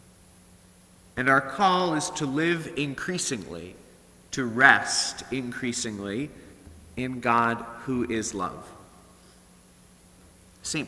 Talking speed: 90 wpm